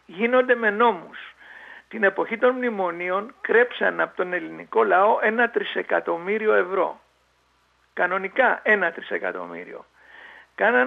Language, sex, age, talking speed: Greek, male, 60-79, 105 wpm